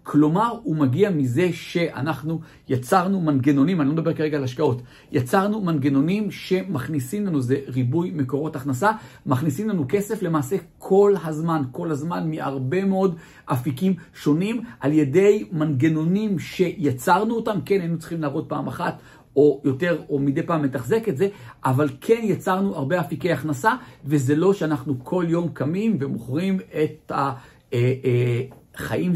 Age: 50-69